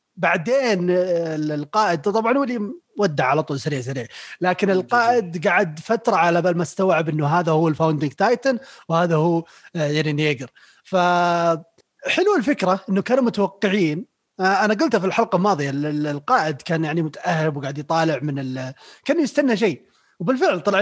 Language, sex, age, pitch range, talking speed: Arabic, male, 30-49, 155-205 Hz, 140 wpm